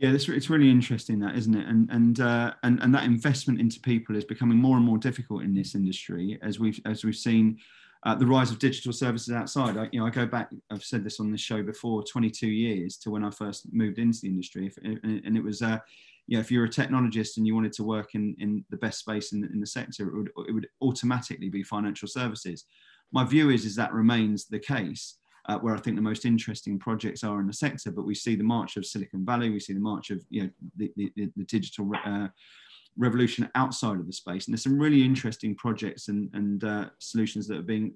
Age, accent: 30-49, British